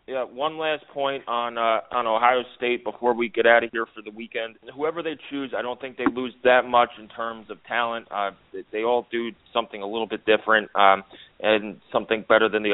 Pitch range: 110-120 Hz